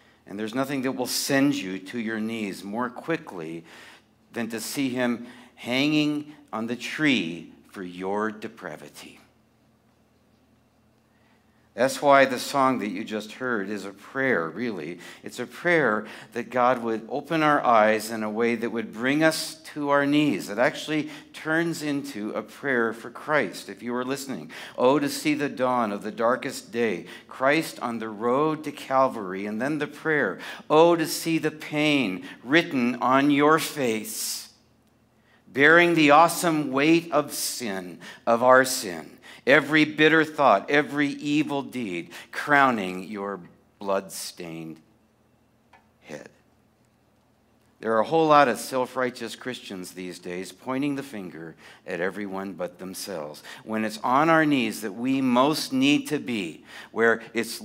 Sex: male